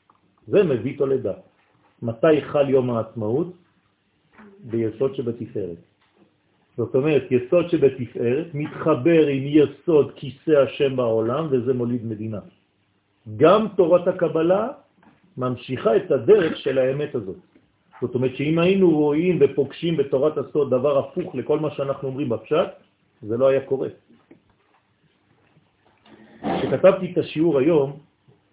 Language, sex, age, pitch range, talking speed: French, male, 50-69, 115-150 Hz, 105 wpm